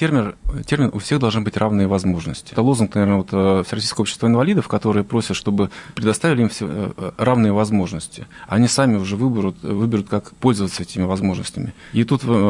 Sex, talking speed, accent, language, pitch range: male, 155 wpm, native, Russian, 100-120 Hz